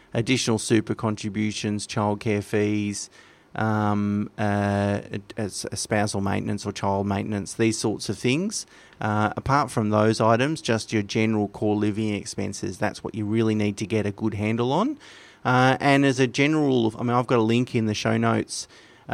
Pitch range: 105-120 Hz